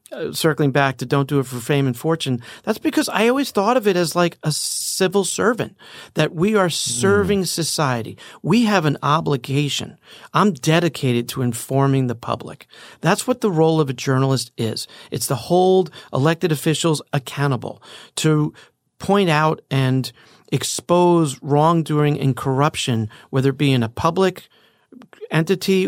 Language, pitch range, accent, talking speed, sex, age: English, 130-170 Hz, American, 155 wpm, male, 40-59